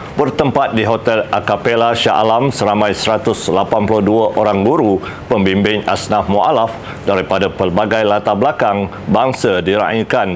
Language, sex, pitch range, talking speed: Malay, male, 100-110 Hz, 105 wpm